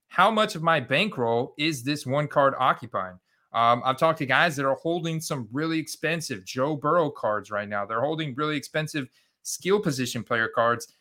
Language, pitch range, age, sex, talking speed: English, 120-155 Hz, 30-49, male, 185 wpm